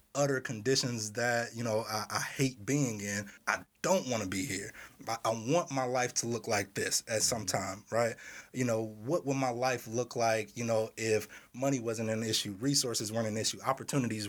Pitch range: 105-130 Hz